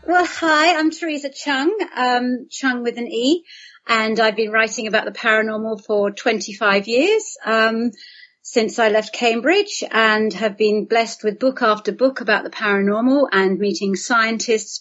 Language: English